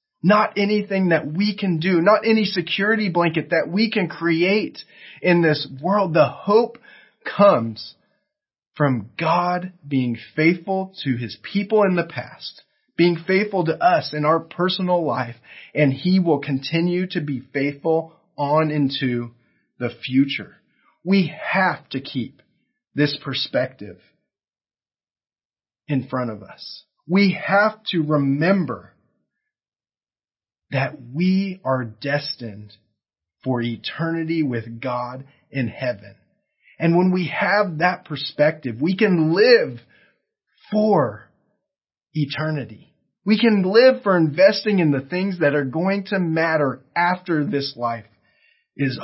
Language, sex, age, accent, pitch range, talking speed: English, male, 30-49, American, 130-190 Hz, 125 wpm